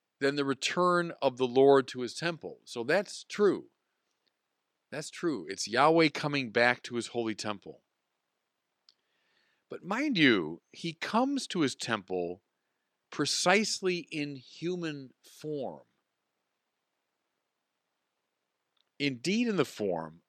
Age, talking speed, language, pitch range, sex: 50-69, 110 wpm, English, 125-180 Hz, male